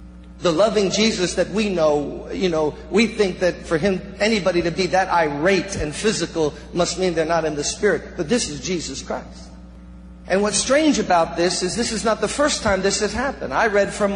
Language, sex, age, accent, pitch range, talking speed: English, male, 50-69, American, 175-235 Hz, 210 wpm